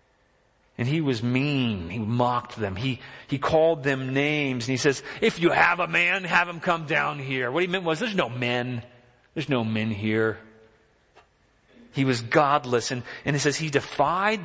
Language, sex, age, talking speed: German, male, 40-59, 185 wpm